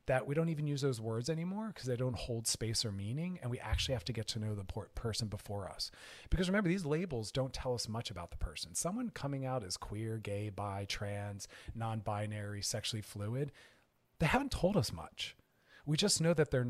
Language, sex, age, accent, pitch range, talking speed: English, male, 40-59, American, 105-140 Hz, 210 wpm